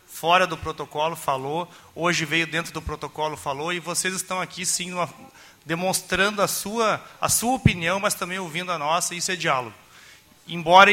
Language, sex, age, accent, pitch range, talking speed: Portuguese, male, 30-49, Brazilian, 160-195 Hz, 165 wpm